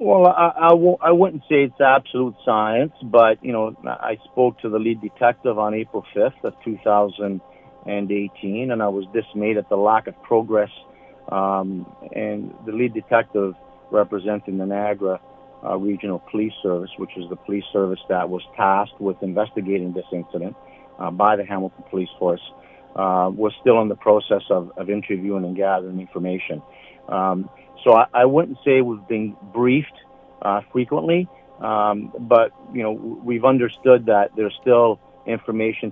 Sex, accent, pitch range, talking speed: male, American, 100-120 Hz, 160 wpm